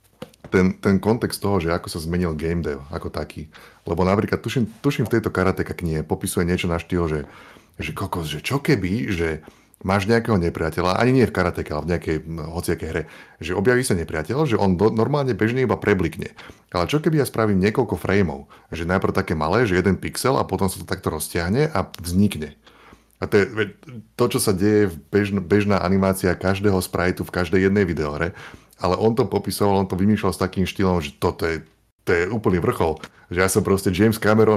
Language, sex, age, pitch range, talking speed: Slovak, male, 30-49, 90-105 Hz, 205 wpm